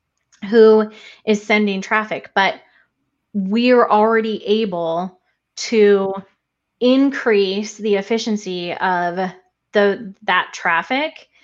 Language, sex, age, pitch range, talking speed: English, female, 20-39, 190-240 Hz, 90 wpm